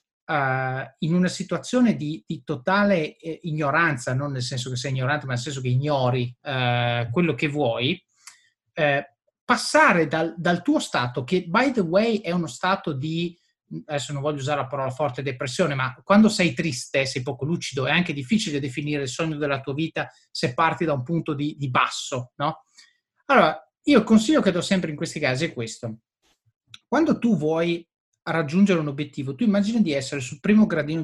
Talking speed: 180 wpm